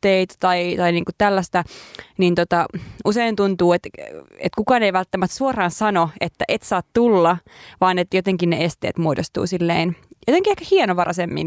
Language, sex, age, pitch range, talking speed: Finnish, female, 20-39, 170-205 Hz, 150 wpm